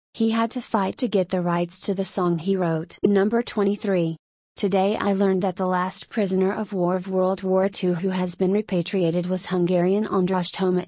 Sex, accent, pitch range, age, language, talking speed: female, American, 180-200 Hz, 30-49, English, 200 wpm